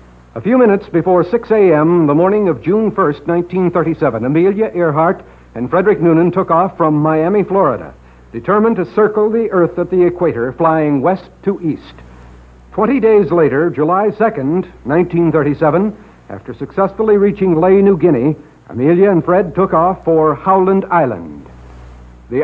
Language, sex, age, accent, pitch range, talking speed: English, male, 70-89, American, 130-190 Hz, 145 wpm